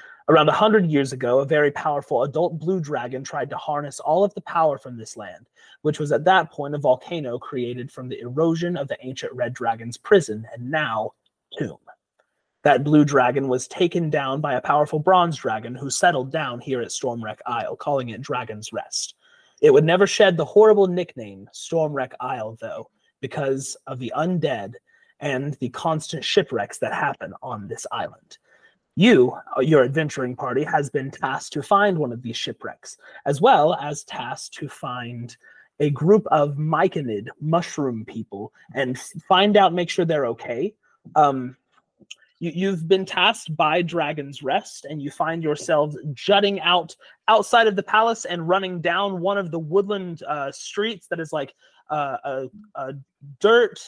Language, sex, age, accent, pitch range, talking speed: English, male, 30-49, American, 130-180 Hz, 170 wpm